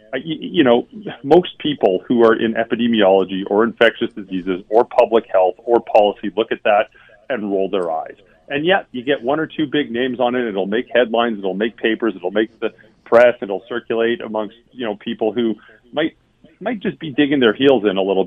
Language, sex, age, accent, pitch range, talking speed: English, male, 40-59, American, 105-140 Hz, 200 wpm